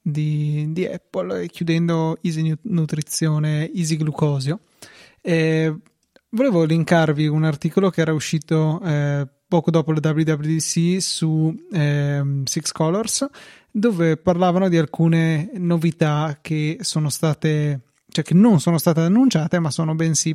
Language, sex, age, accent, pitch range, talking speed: Italian, male, 20-39, native, 155-180 Hz, 125 wpm